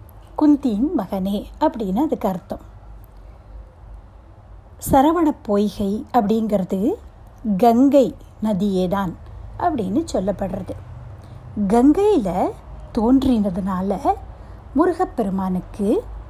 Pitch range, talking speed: 180-270 Hz, 60 wpm